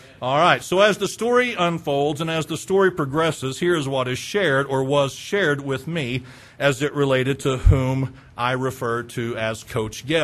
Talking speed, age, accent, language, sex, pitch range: 195 wpm, 50-69, American, English, male, 125-170 Hz